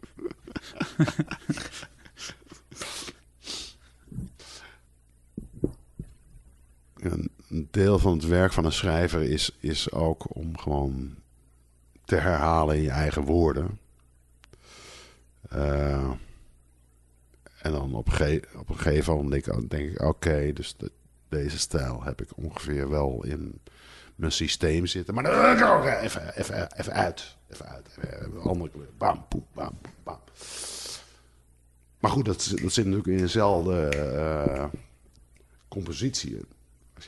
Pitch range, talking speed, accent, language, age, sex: 65-95 Hz, 115 wpm, Dutch, Dutch, 50-69, male